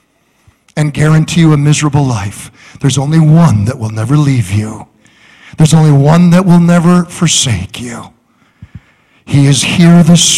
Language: English